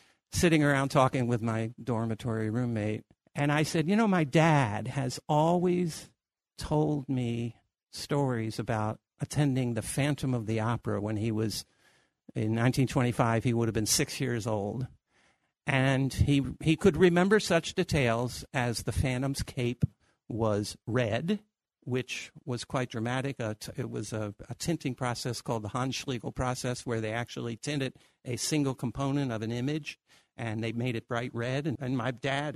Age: 60-79